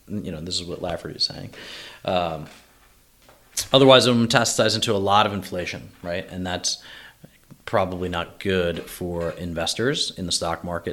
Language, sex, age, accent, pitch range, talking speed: English, male, 30-49, American, 85-105 Hz, 165 wpm